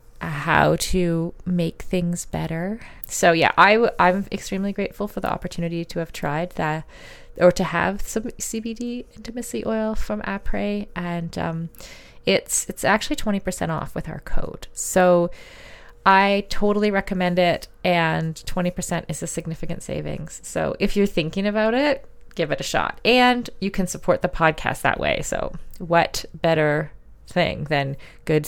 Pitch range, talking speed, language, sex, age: 155-200 Hz, 155 wpm, English, female, 20-39